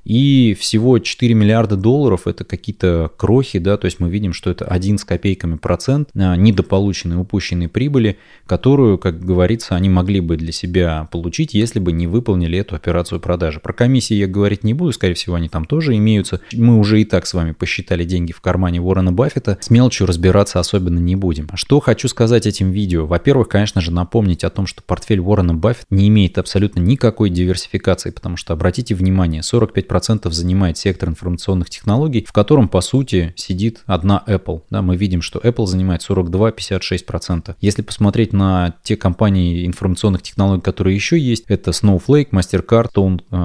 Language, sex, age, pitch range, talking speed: Russian, male, 20-39, 90-110 Hz, 175 wpm